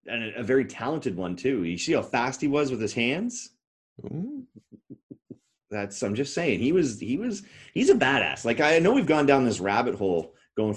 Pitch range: 90-130 Hz